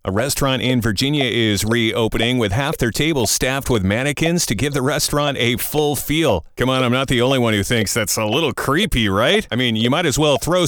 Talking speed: 230 wpm